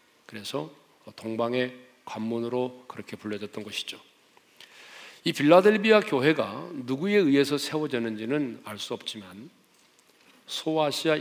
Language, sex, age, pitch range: Korean, male, 40-59, 120-155 Hz